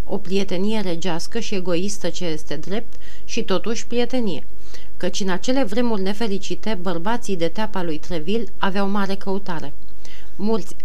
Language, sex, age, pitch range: Romanian, female, 40-59, 175-215 Hz